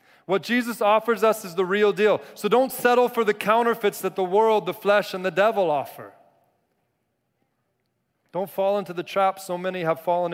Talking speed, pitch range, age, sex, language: 185 wpm, 135-175 Hz, 30-49, male, English